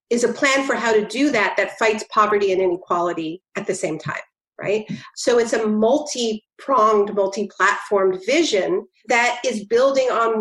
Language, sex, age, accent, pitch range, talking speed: English, female, 40-59, American, 205-230 Hz, 160 wpm